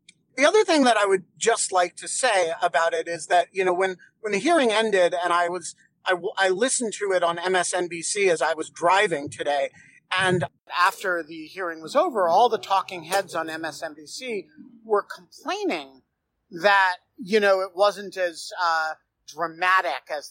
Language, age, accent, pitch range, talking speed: English, 40-59, American, 170-215 Hz, 175 wpm